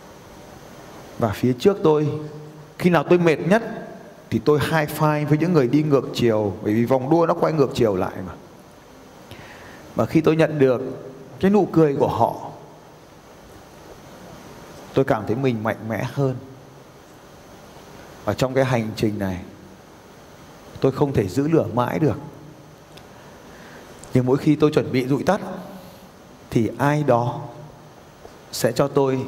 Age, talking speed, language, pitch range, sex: 20-39, 150 wpm, Vietnamese, 115-150 Hz, male